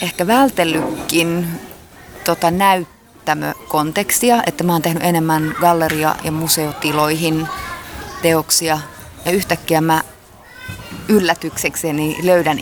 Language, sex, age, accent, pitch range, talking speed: Finnish, female, 30-49, native, 150-175 Hz, 85 wpm